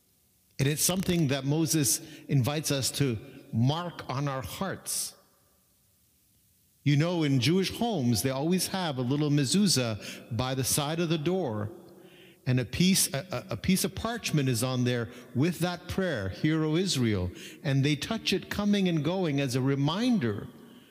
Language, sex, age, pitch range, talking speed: English, male, 50-69, 125-180 Hz, 160 wpm